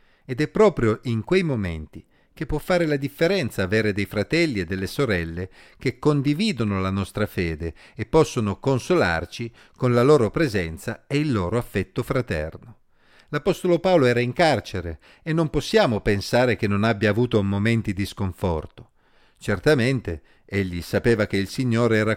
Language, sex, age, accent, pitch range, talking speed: Italian, male, 50-69, native, 105-145 Hz, 155 wpm